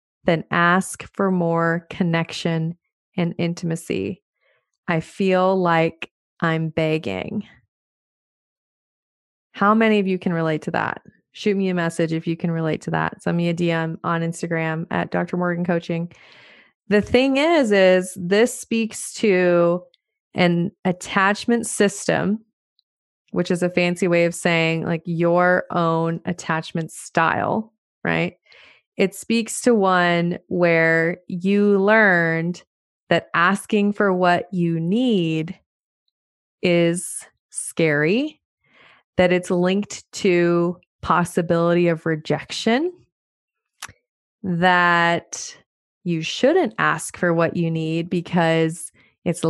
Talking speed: 115 wpm